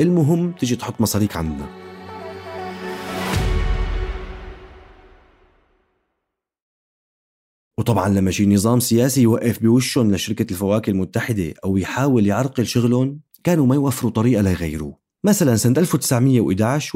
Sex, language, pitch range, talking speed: male, Arabic, 100-130 Hz, 95 wpm